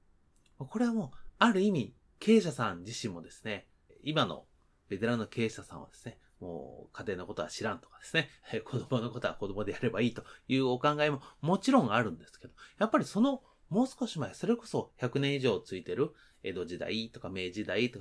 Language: Japanese